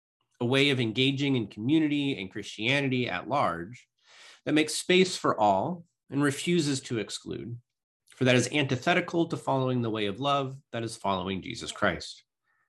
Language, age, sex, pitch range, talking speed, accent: English, 30-49, male, 115-150 Hz, 160 wpm, American